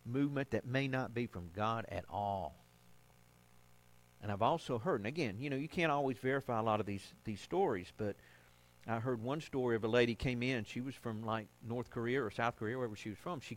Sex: male